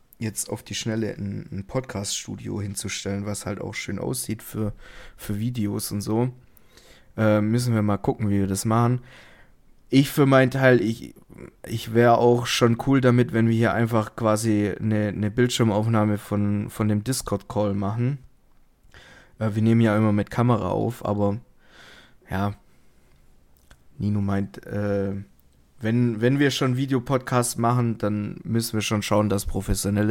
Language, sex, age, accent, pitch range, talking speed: German, male, 20-39, German, 105-125 Hz, 150 wpm